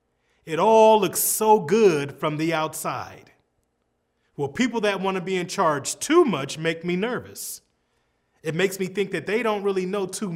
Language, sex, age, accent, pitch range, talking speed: English, male, 30-49, American, 140-205 Hz, 180 wpm